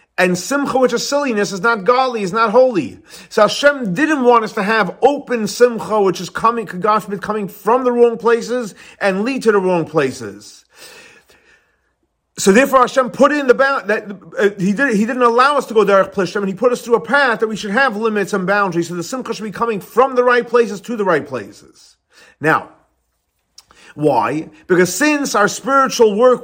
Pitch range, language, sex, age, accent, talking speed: 190-245 Hz, English, male, 40-59, American, 205 wpm